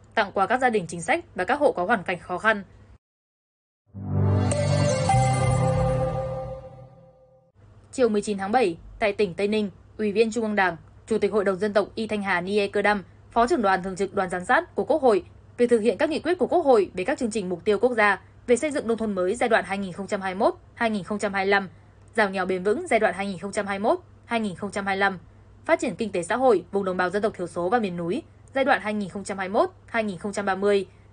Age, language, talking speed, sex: 10-29, Vietnamese, 200 wpm, female